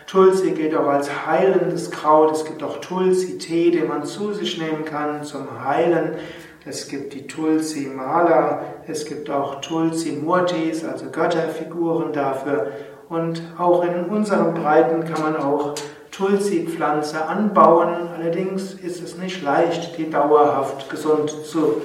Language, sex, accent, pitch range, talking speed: German, male, German, 140-165 Hz, 130 wpm